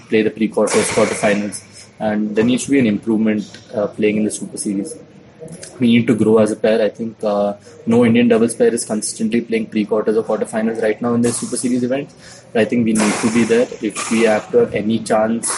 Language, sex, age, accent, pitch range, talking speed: English, male, 20-39, Indian, 110-125 Hz, 240 wpm